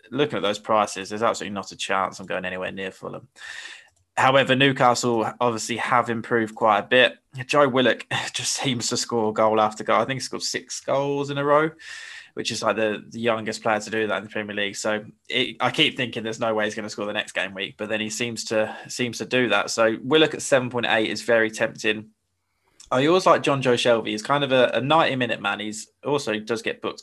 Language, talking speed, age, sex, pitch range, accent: English, 240 wpm, 20-39, male, 105-125 Hz, British